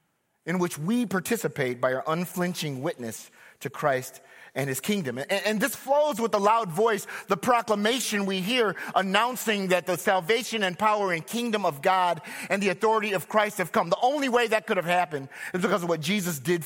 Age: 30-49